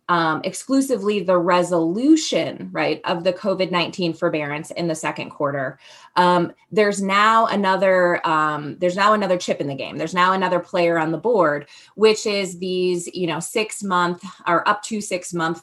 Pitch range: 170-210 Hz